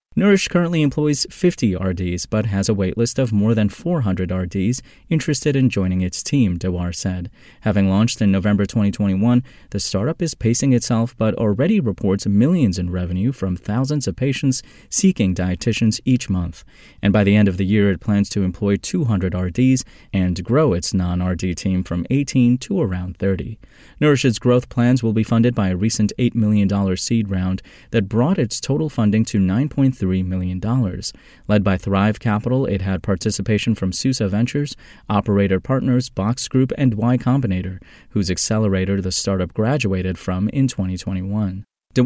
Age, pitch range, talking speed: 30-49, 95-130 Hz, 165 wpm